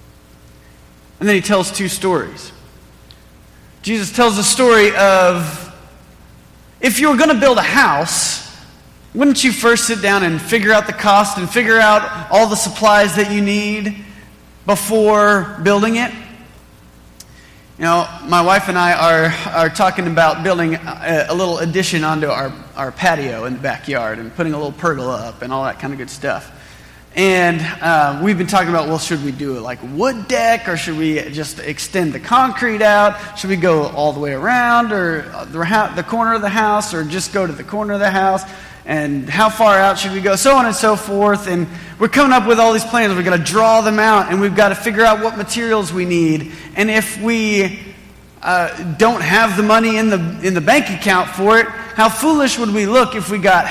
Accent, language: American, English